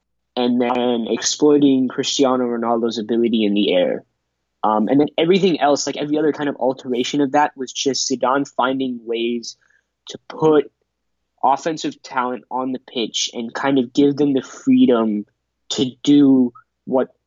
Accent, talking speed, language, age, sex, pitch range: American, 155 wpm, English, 20-39, male, 115-135 Hz